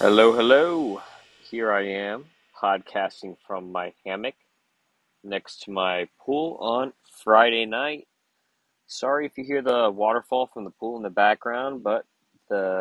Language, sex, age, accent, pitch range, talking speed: English, male, 30-49, American, 100-135 Hz, 140 wpm